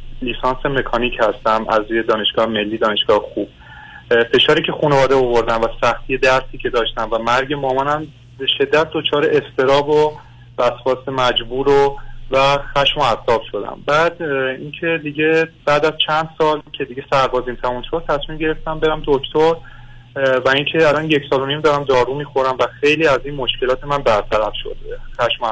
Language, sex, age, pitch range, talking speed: Persian, male, 30-49, 120-150 Hz, 160 wpm